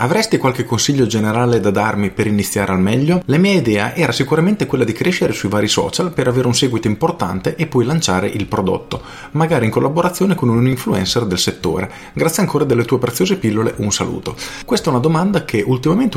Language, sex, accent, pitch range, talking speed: Italian, male, native, 105-135 Hz, 195 wpm